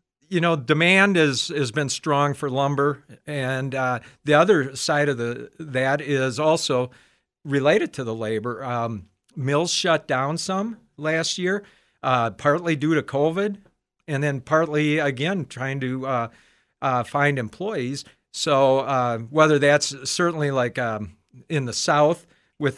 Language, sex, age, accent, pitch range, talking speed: English, male, 50-69, American, 125-155 Hz, 150 wpm